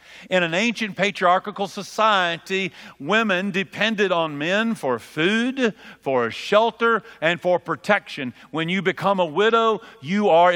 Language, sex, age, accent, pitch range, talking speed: English, male, 50-69, American, 140-205 Hz, 130 wpm